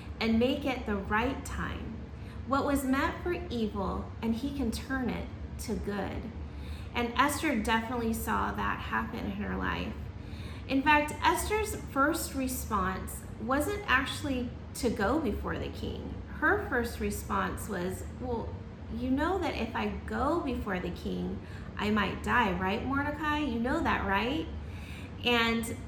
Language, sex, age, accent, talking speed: English, female, 30-49, American, 145 wpm